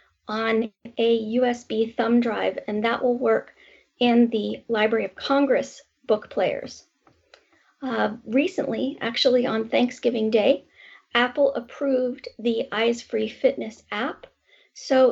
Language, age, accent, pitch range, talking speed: English, 40-59, American, 220-265 Hz, 120 wpm